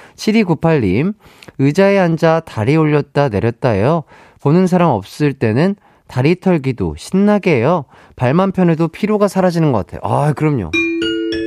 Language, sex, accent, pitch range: Korean, male, native, 115-185 Hz